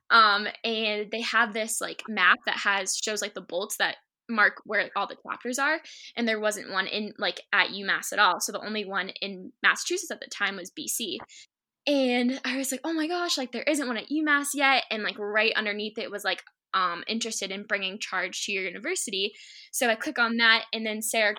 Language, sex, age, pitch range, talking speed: English, female, 10-29, 205-245 Hz, 220 wpm